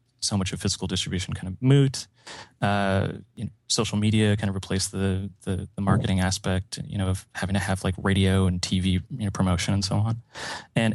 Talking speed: 210 wpm